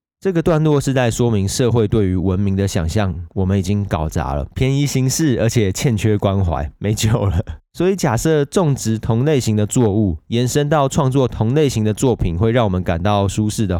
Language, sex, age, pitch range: Chinese, male, 20-39, 95-120 Hz